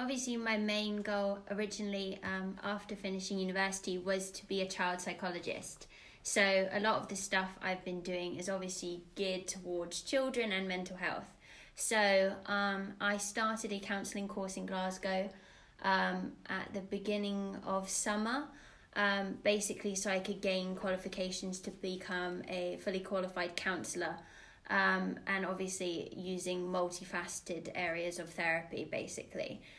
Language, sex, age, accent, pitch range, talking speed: English, female, 20-39, British, 185-200 Hz, 135 wpm